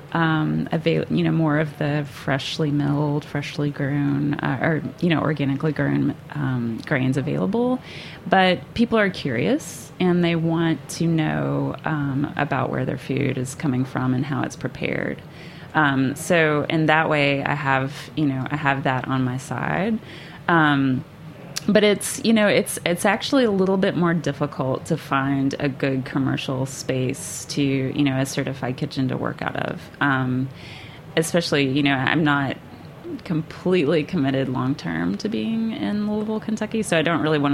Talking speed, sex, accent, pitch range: 170 wpm, female, American, 130-160 Hz